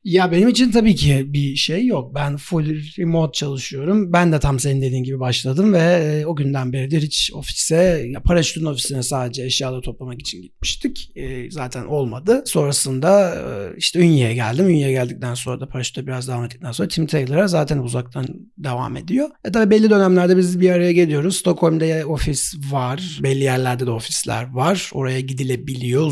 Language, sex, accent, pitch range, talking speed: Turkish, male, native, 125-175 Hz, 165 wpm